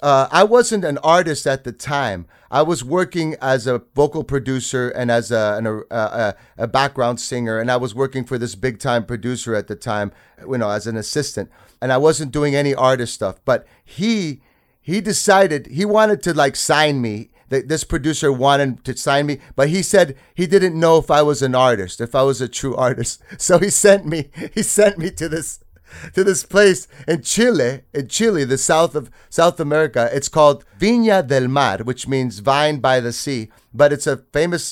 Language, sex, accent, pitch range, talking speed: English, male, American, 125-165 Hz, 205 wpm